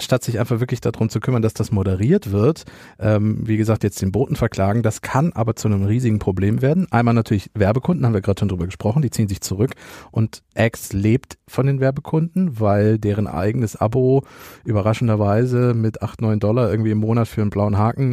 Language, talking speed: German, 200 wpm